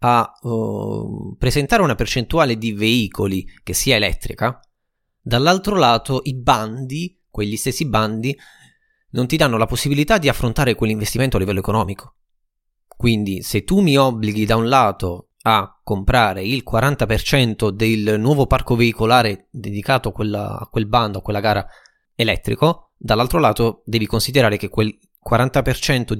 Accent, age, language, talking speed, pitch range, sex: native, 20-39, Italian, 140 wpm, 105-130 Hz, male